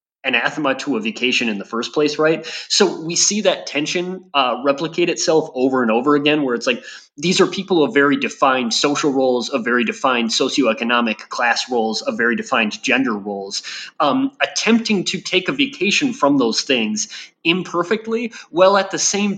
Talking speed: 175 wpm